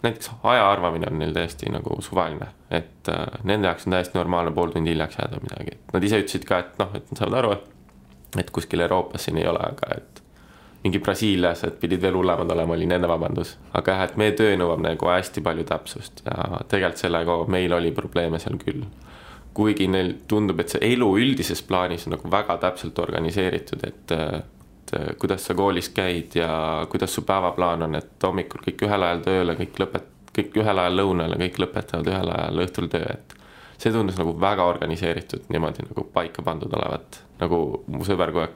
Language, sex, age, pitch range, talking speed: English, male, 20-39, 85-95 Hz, 175 wpm